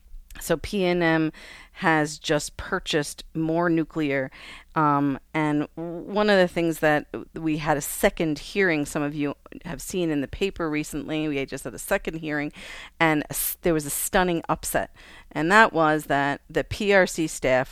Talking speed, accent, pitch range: 175 wpm, American, 145-170 Hz